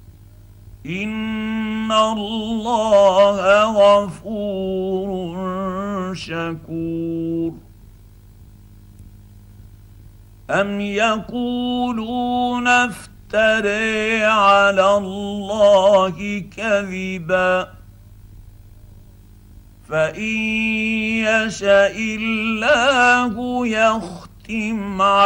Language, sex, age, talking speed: Arabic, male, 50-69, 35 wpm